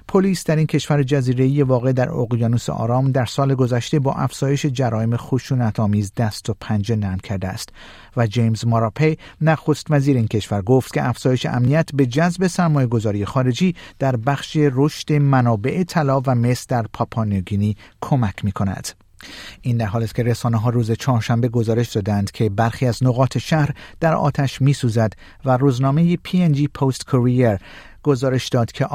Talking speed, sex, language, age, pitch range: 150 wpm, male, Persian, 50-69, 115-145 Hz